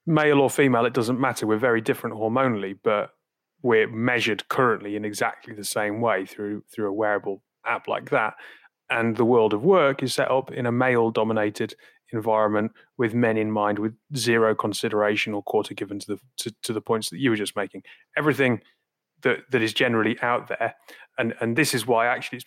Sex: male